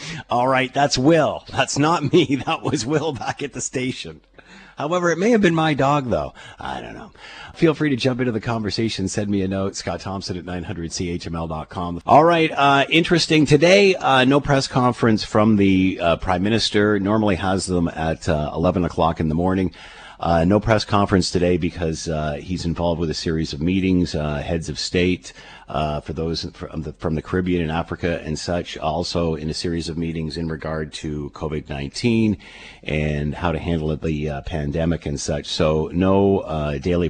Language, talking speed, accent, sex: English, 190 wpm, American, male